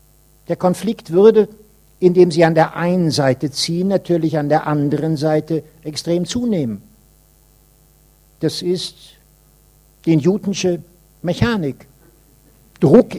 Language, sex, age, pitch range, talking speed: German, male, 60-79, 145-185 Hz, 105 wpm